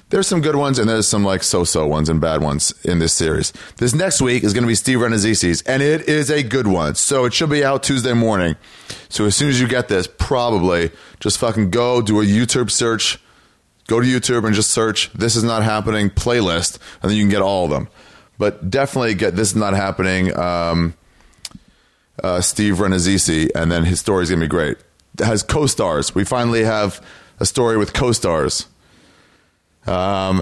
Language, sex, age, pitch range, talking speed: English, male, 30-49, 90-115 Hz, 200 wpm